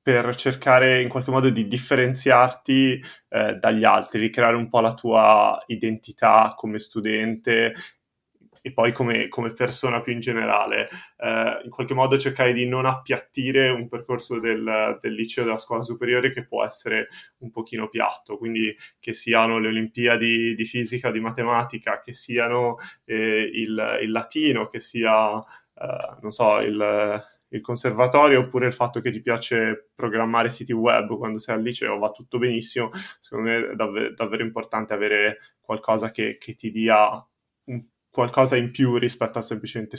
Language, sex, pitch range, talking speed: Italian, male, 110-125 Hz, 160 wpm